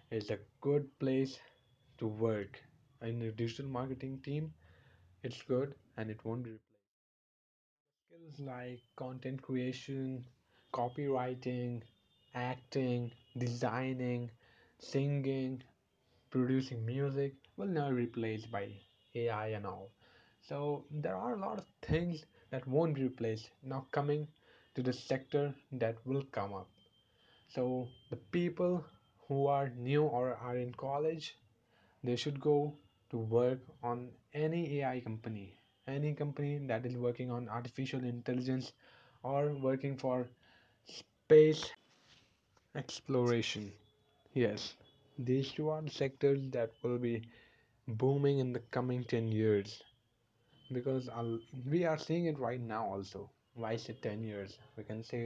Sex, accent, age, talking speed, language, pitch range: male, Indian, 20-39, 130 wpm, English, 115-140 Hz